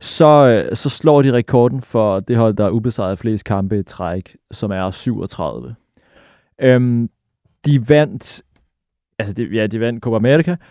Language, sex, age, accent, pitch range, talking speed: Danish, male, 30-49, native, 115-145 Hz, 155 wpm